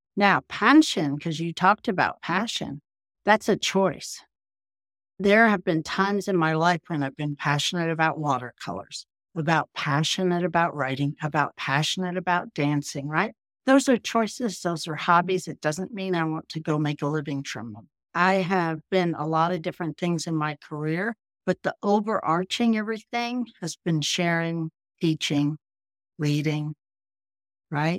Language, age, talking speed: English, 60-79, 150 wpm